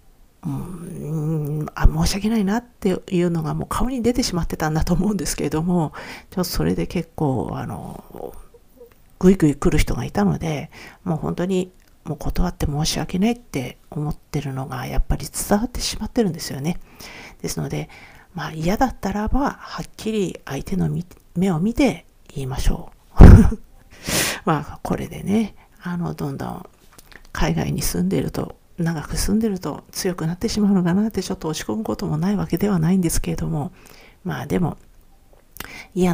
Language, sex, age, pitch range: Japanese, female, 50-69, 155-200 Hz